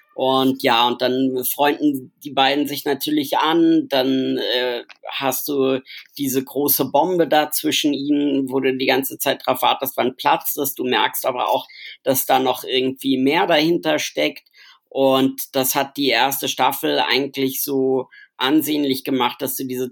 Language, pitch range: German, 130-150 Hz